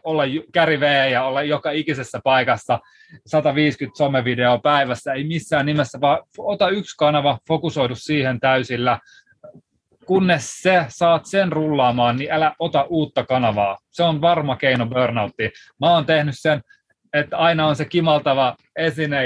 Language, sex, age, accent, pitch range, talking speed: Finnish, male, 20-39, native, 130-170 Hz, 140 wpm